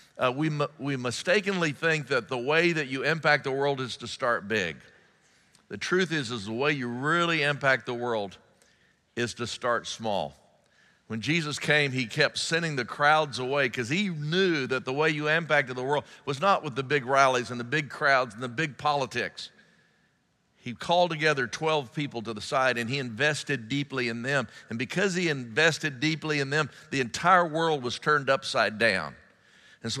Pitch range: 130-160 Hz